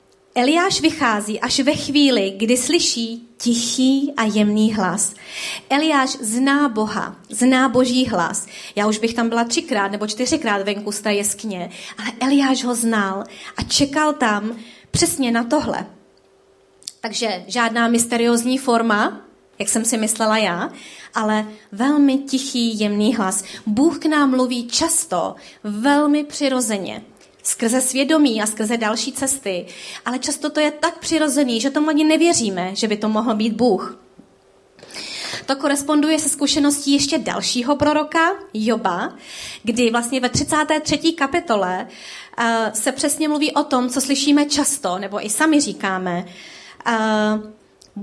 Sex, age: female, 30-49